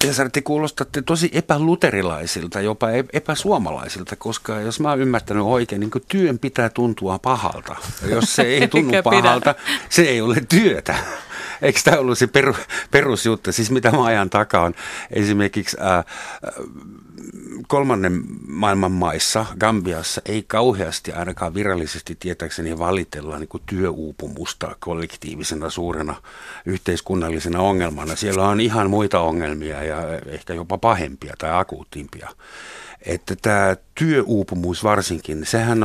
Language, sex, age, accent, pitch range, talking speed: Finnish, male, 60-79, native, 90-125 Hz, 120 wpm